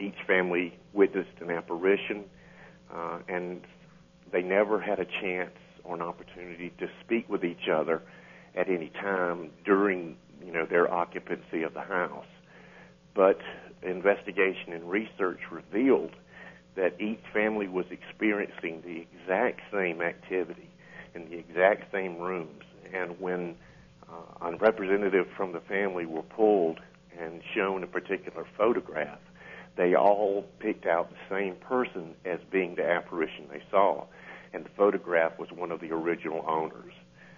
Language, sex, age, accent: English, male, 50-69, American